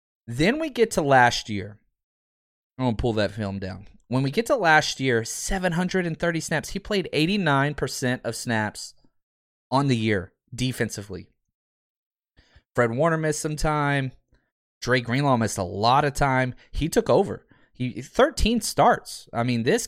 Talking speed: 155 wpm